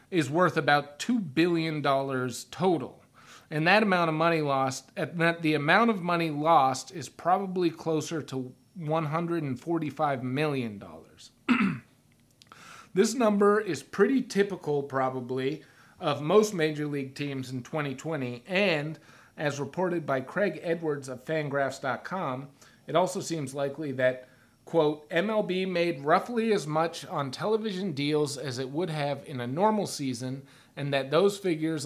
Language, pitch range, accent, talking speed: English, 135-170 Hz, American, 140 wpm